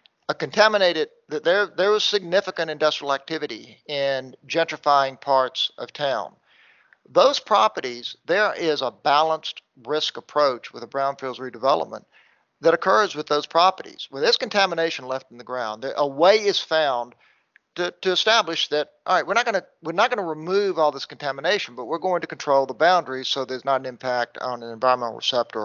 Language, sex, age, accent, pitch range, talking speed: English, male, 50-69, American, 130-170 Hz, 175 wpm